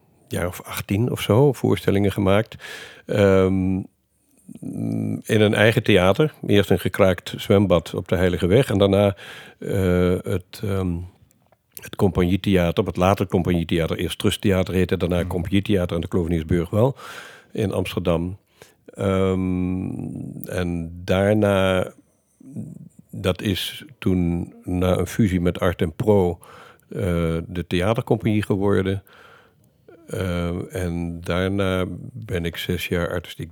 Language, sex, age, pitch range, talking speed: Dutch, male, 60-79, 90-105 Hz, 115 wpm